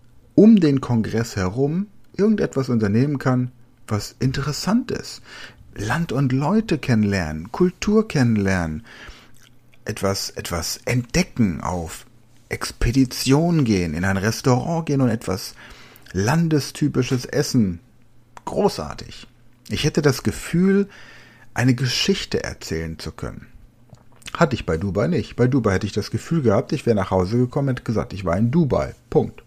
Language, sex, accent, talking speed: German, male, German, 130 wpm